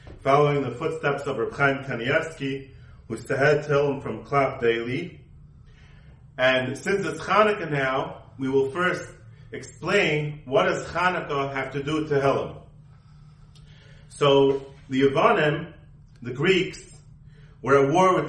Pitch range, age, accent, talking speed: 130-170 Hz, 40-59, American, 130 wpm